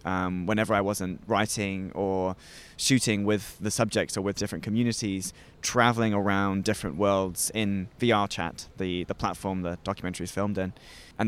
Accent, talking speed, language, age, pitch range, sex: British, 155 wpm, English, 20-39, 95-110 Hz, male